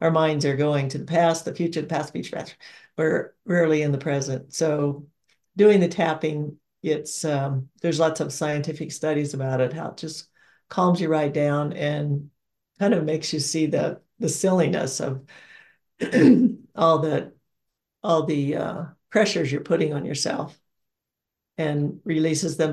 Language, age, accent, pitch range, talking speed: English, 60-79, American, 150-175 Hz, 160 wpm